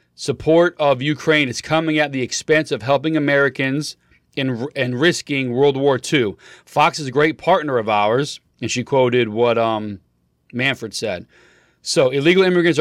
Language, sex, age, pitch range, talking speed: English, male, 30-49, 120-155 Hz, 155 wpm